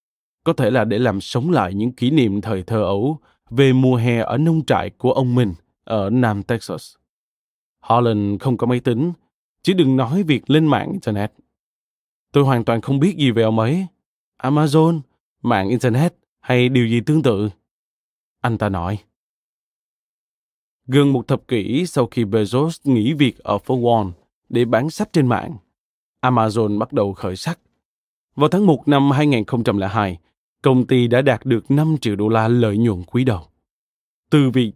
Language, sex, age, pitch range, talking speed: Vietnamese, male, 20-39, 110-140 Hz, 170 wpm